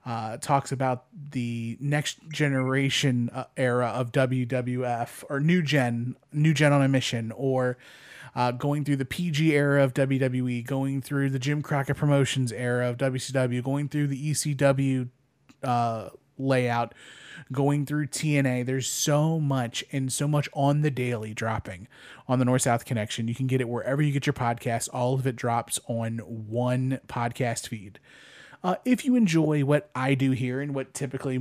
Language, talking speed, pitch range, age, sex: English, 170 wpm, 125-145 Hz, 30-49, male